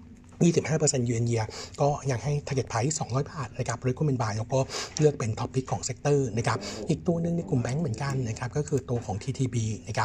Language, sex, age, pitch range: Thai, male, 60-79, 115-140 Hz